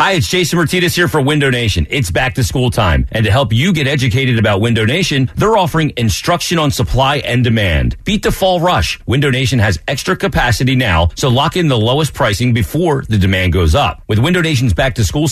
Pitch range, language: 110-155 Hz, English